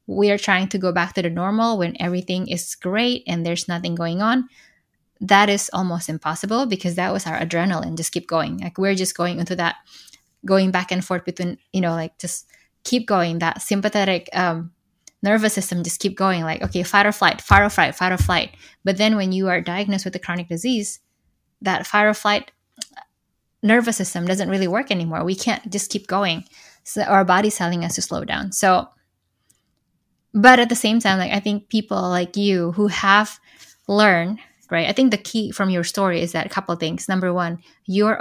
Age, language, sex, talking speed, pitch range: 20-39, English, female, 205 wpm, 175-205 Hz